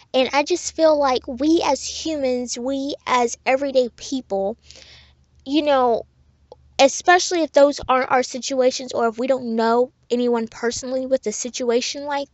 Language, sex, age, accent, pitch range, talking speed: English, female, 10-29, American, 230-280 Hz, 150 wpm